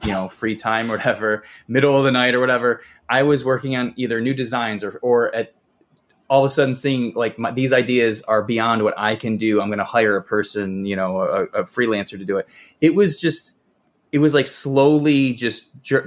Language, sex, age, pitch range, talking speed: English, male, 20-39, 105-135 Hz, 225 wpm